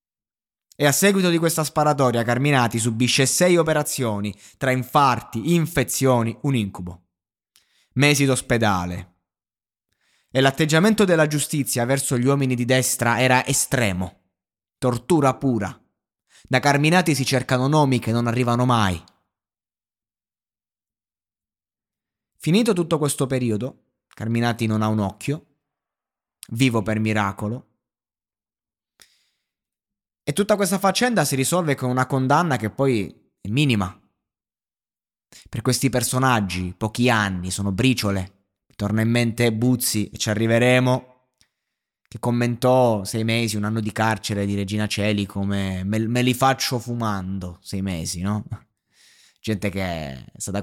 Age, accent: 20-39, native